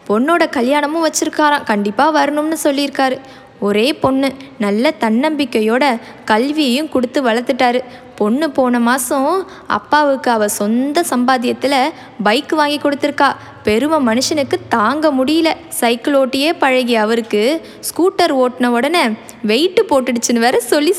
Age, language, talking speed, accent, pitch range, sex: 20-39, Tamil, 105 wpm, native, 230-315 Hz, female